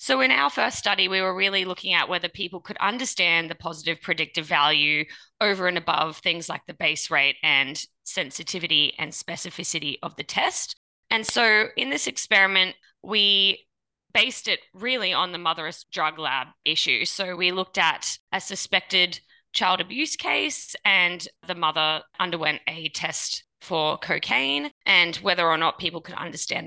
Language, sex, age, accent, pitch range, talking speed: English, female, 20-39, Australian, 160-195 Hz, 160 wpm